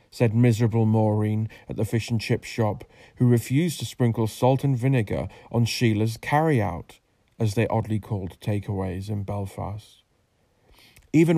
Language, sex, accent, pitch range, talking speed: English, male, British, 105-125 Hz, 130 wpm